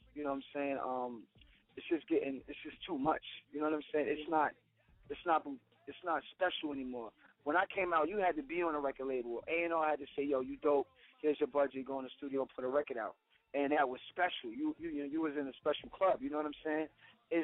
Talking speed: 250 wpm